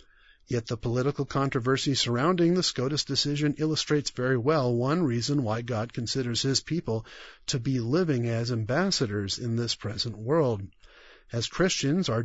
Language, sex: English, male